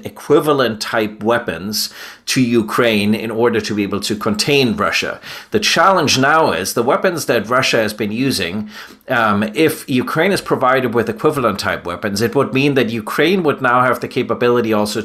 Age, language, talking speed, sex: 30-49, English, 170 wpm, male